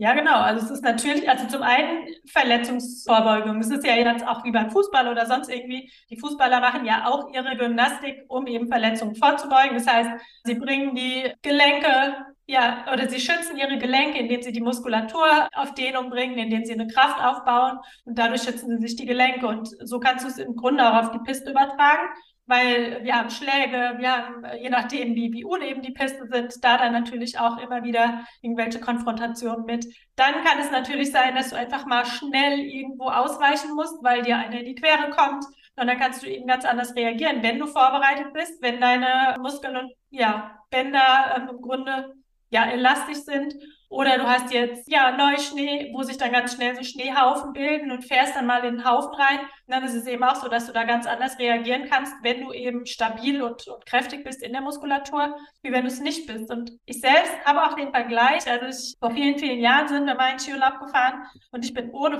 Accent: German